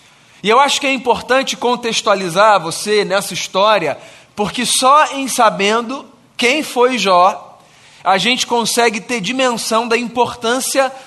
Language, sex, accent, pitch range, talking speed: Portuguese, male, Brazilian, 180-235 Hz, 130 wpm